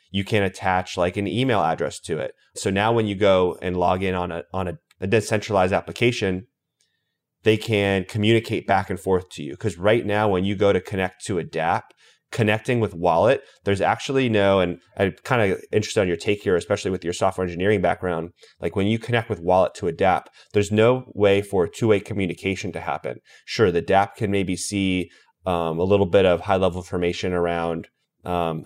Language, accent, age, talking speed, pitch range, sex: English, American, 30-49, 200 wpm, 90-110 Hz, male